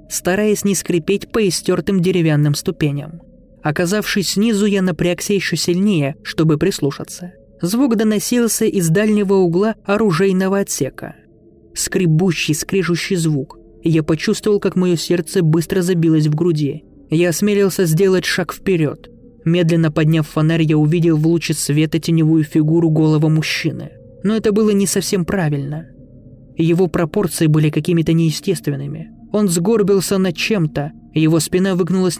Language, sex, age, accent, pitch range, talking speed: Russian, male, 20-39, native, 160-195 Hz, 130 wpm